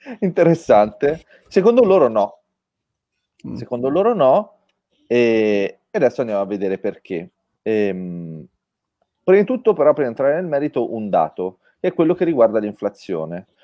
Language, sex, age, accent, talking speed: Italian, male, 30-49, native, 130 wpm